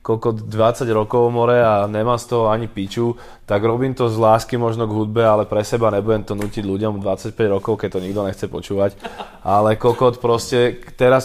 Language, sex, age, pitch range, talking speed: Slovak, male, 20-39, 110-125 Hz, 190 wpm